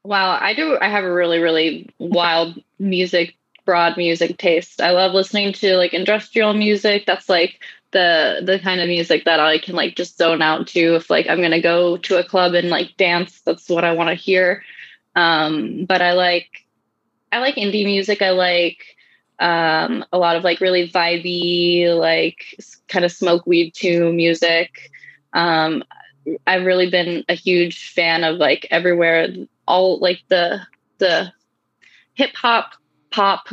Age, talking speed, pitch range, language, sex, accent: 20-39, 170 wpm, 170-190 Hz, English, female, American